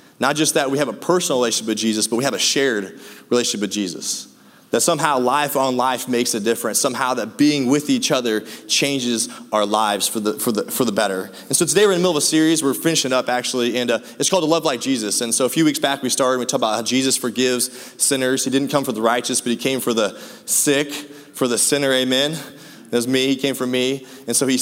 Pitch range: 120-140 Hz